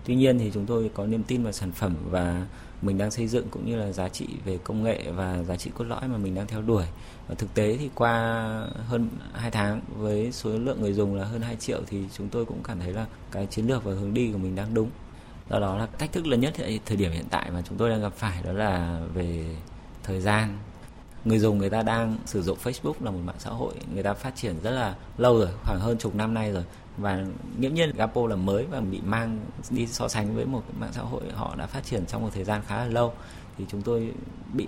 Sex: male